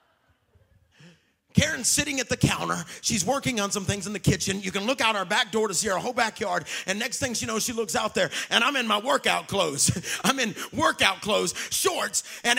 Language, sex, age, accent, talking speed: English, male, 40-59, American, 220 wpm